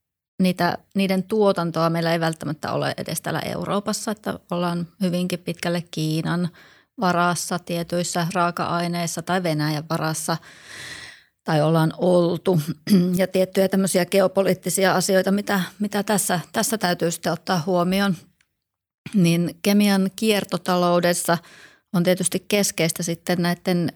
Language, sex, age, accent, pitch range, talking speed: Finnish, female, 30-49, native, 165-185 Hz, 115 wpm